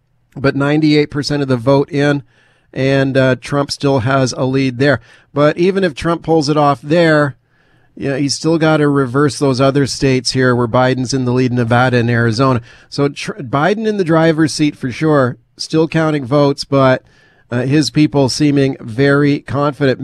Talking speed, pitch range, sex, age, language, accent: 185 wpm, 135-160 Hz, male, 40-59, English, American